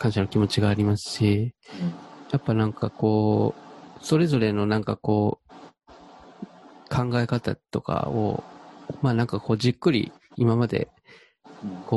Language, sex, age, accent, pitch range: Japanese, male, 20-39, native, 110-135 Hz